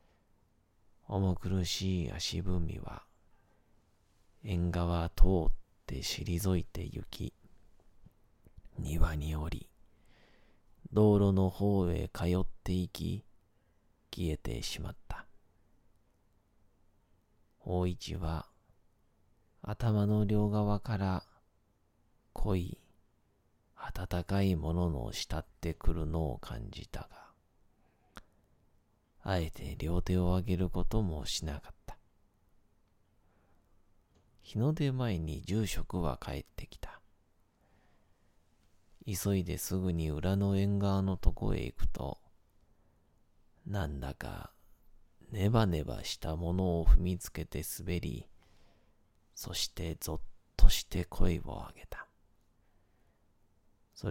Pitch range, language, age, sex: 85-105 Hz, Japanese, 40-59, male